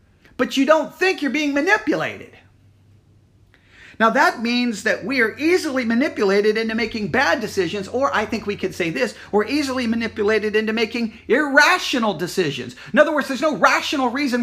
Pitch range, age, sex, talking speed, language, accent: 185-260 Hz, 40-59, male, 165 wpm, English, American